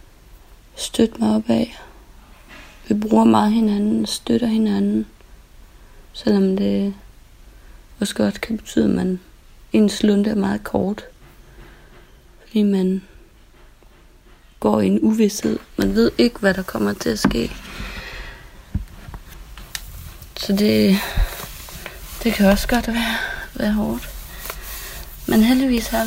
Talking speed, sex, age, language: 115 wpm, female, 30-49, Danish